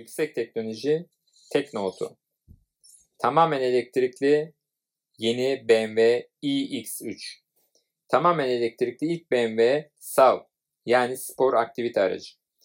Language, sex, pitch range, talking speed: Turkish, male, 115-155 Hz, 85 wpm